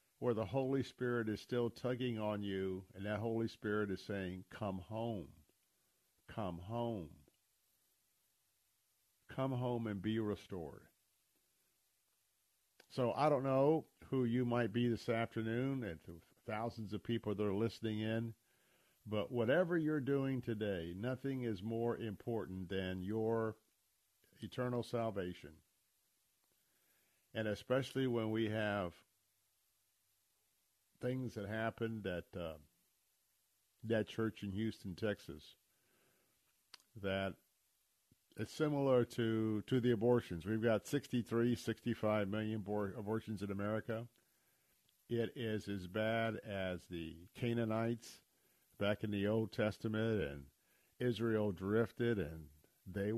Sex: male